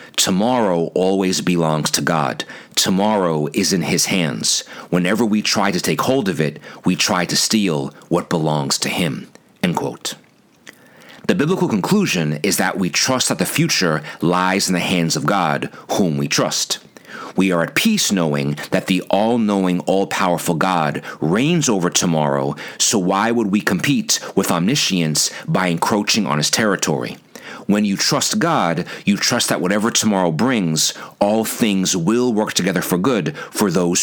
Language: English